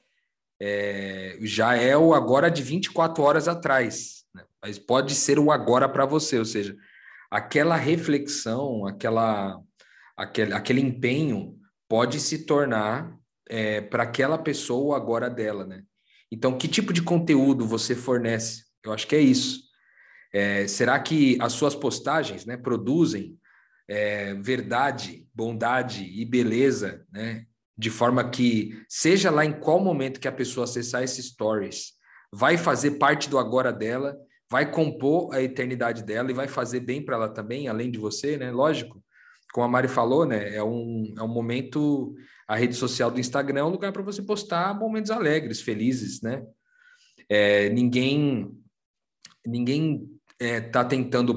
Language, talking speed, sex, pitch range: Portuguese, 150 wpm, male, 115-145 Hz